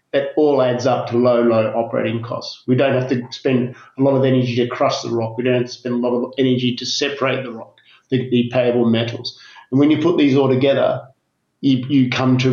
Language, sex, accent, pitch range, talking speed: English, male, Australian, 120-130 Hz, 235 wpm